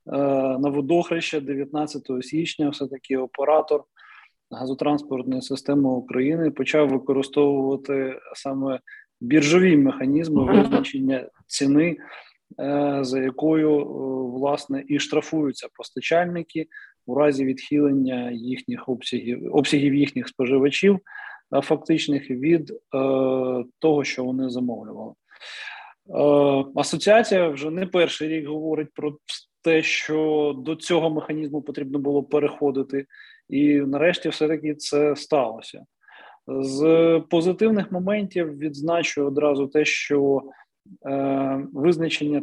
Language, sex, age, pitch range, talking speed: Ukrainian, male, 20-39, 140-160 Hz, 90 wpm